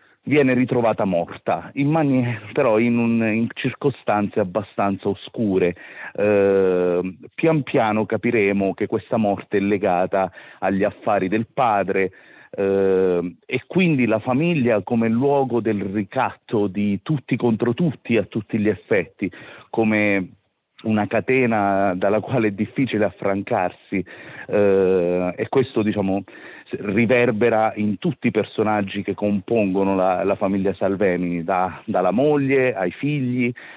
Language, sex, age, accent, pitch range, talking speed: Italian, male, 40-59, native, 100-120 Hz, 120 wpm